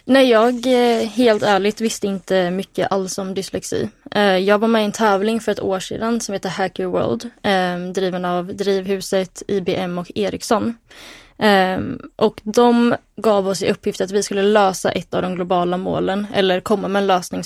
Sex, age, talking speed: female, 20-39, 170 wpm